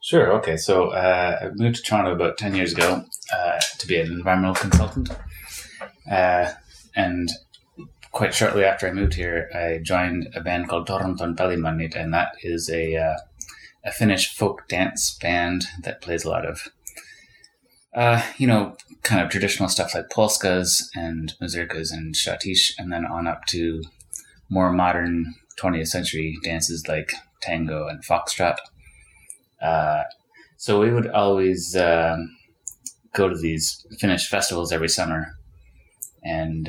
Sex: male